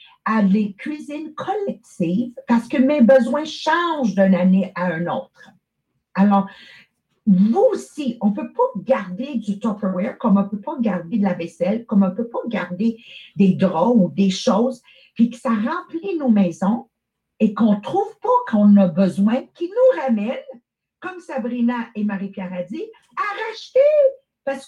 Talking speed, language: 170 wpm, English